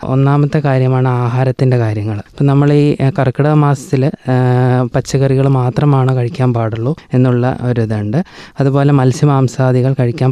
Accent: native